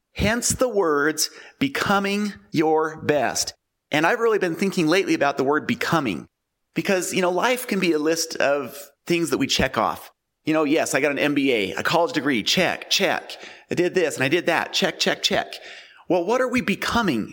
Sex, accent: male, American